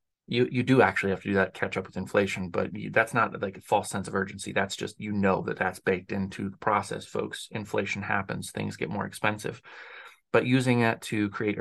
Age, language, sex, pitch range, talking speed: 30-49, English, male, 100-125 Hz, 235 wpm